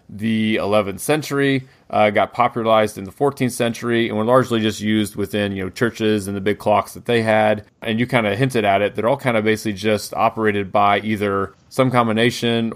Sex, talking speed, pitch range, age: male, 205 wpm, 100-115 Hz, 30-49